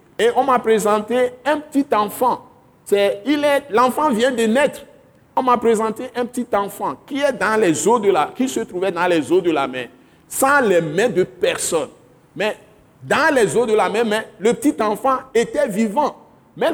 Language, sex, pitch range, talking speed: French, male, 215-285 Hz, 195 wpm